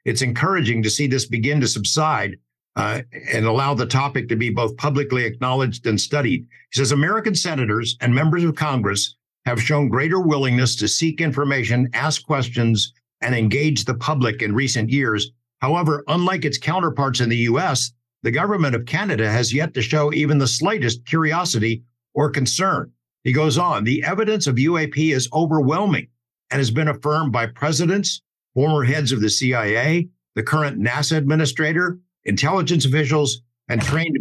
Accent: American